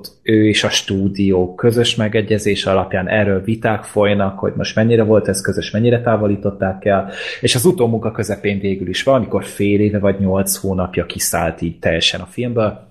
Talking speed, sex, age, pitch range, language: 175 wpm, male, 30-49, 100-125 Hz, Hungarian